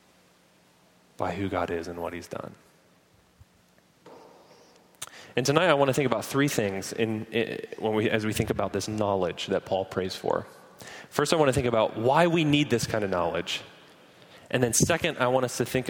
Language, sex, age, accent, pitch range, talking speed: English, male, 30-49, American, 115-190 Hz, 195 wpm